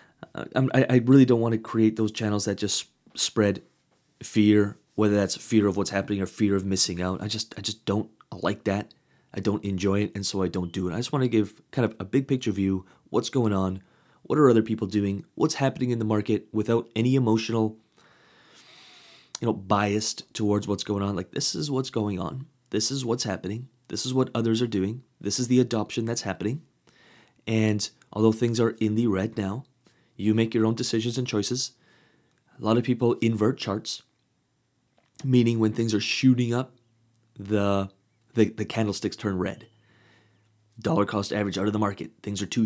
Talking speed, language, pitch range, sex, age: 195 wpm, English, 100-115 Hz, male, 30-49